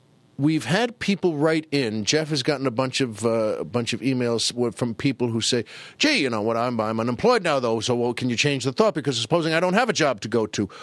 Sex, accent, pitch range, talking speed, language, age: male, American, 130-175 Hz, 250 wpm, English, 50-69